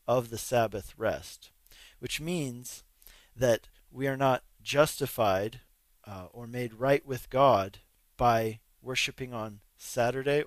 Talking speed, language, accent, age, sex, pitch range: 120 wpm, English, American, 40-59, male, 105-135 Hz